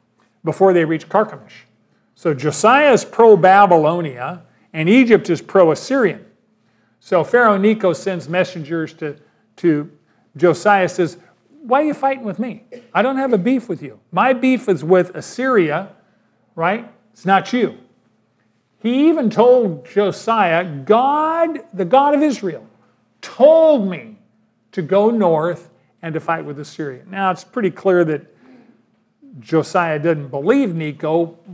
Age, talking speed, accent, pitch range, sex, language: 40-59, 135 wpm, American, 160-205 Hz, male, English